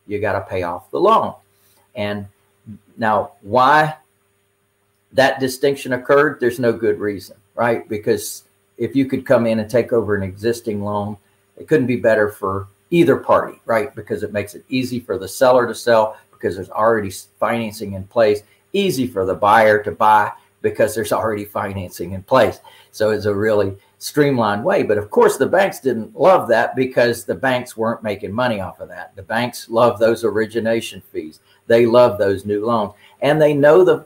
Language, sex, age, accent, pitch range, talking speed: English, male, 50-69, American, 105-130 Hz, 185 wpm